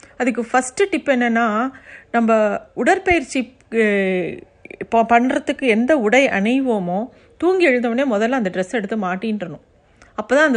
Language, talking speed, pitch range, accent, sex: Tamil, 115 wpm, 210-265 Hz, native, female